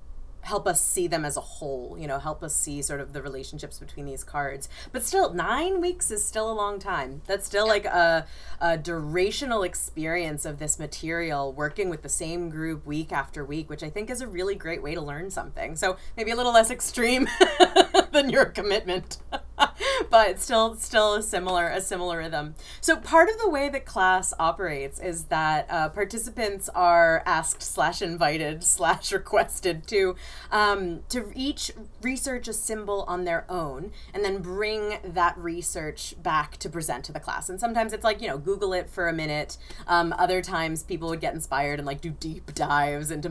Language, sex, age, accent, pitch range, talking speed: English, female, 30-49, American, 155-215 Hz, 190 wpm